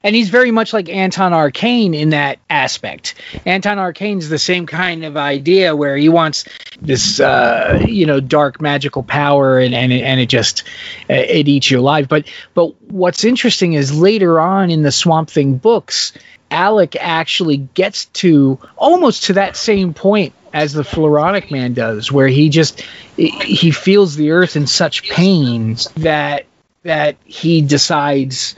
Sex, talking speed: male, 160 wpm